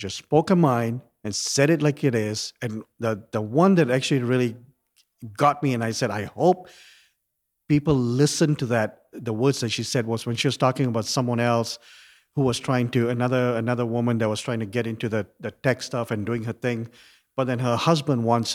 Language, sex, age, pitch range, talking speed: English, male, 50-69, 120-145 Hz, 215 wpm